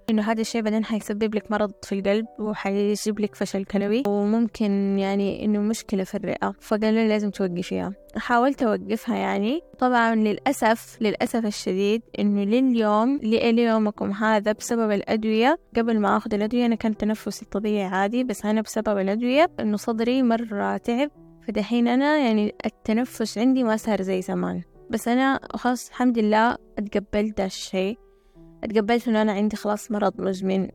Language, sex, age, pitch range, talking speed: Arabic, female, 10-29, 200-230 Hz, 150 wpm